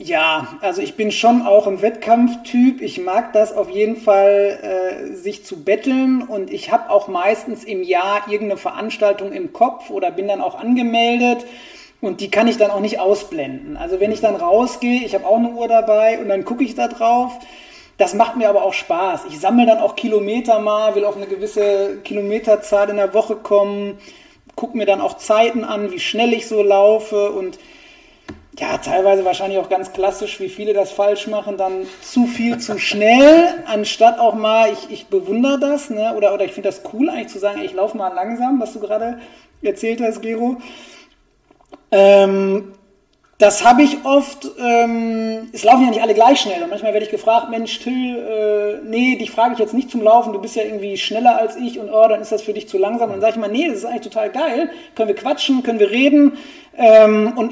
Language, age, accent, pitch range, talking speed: German, 30-49, German, 205-245 Hz, 205 wpm